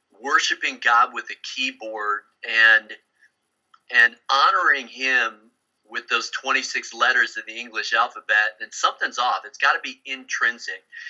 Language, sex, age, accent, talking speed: English, male, 40-59, American, 135 wpm